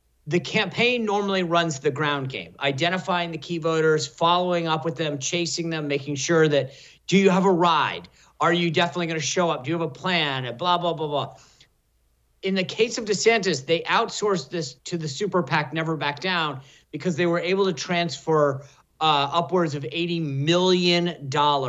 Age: 50-69